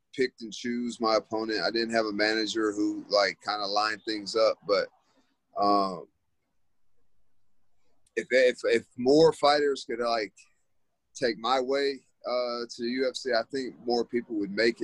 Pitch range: 105-125 Hz